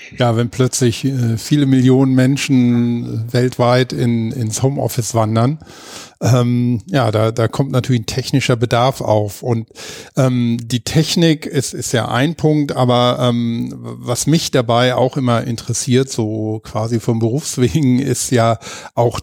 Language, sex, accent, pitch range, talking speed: English, male, German, 115-135 Hz, 145 wpm